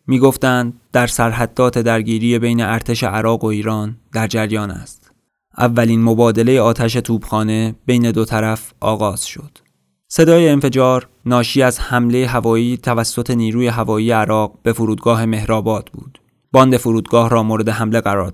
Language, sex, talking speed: Persian, male, 135 wpm